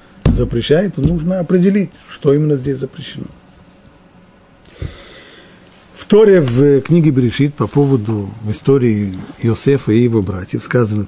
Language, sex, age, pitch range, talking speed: Russian, male, 40-59, 105-145 Hz, 115 wpm